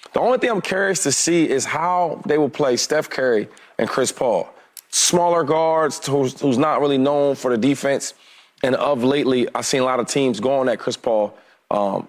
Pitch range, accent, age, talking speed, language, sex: 130-165 Hz, American, 30-49, 205 wpm, English, male